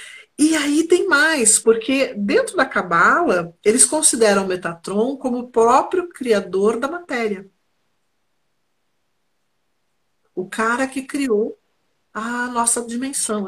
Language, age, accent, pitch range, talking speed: Portuguese, 50-69, Brazilian, 195-275 Hz, 110 wpm